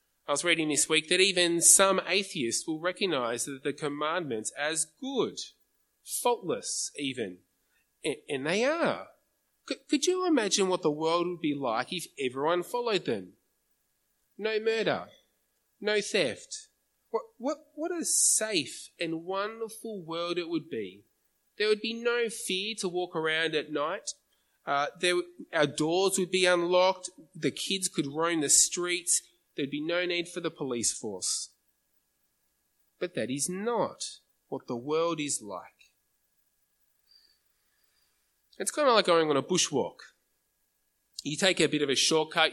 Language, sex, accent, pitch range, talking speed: English, male, Australian, 150-195 Hz, 140 wpm